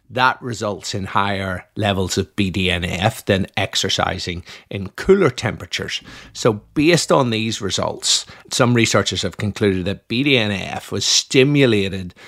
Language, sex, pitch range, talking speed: English, male, 95-120 Hz, 120 wpm